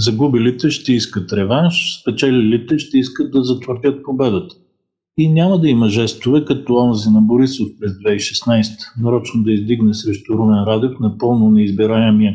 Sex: male